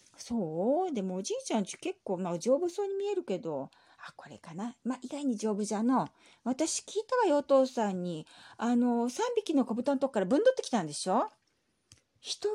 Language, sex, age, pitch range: Japanese, female, 40-59, 180-275 Hz